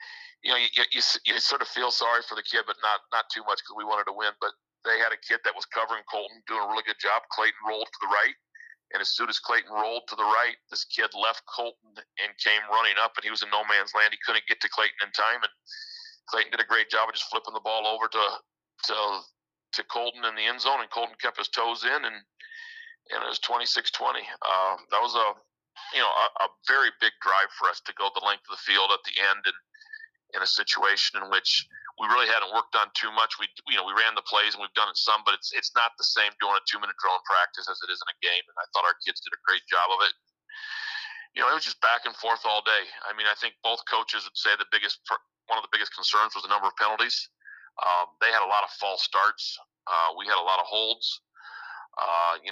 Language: English